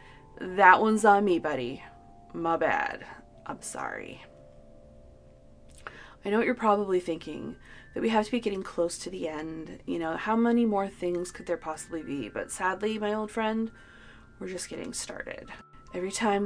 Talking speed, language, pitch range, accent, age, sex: 170 wpm, English, 165-210 Hz, American, 30-49, female